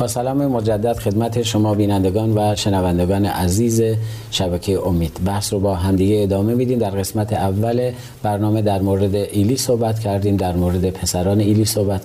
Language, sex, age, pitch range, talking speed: Persian, male, 40-59, 95-120 Hz, 155 wpm